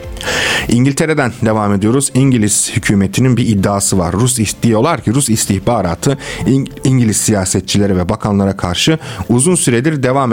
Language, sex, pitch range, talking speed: Turkish, male, 95-125 Hz, 120 wpm